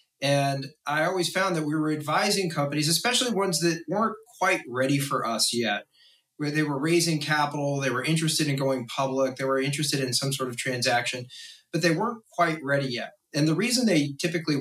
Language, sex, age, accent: English, male, 30-49, American